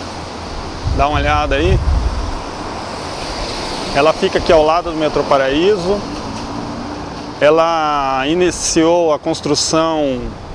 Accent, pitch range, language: Brazilian, 140-190 Hz, Portuguese